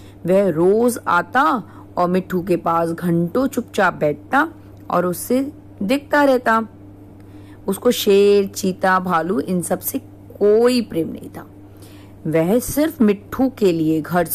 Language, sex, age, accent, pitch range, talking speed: Hindi, female, 40-59, native, 160-235 Hz, 125 wpm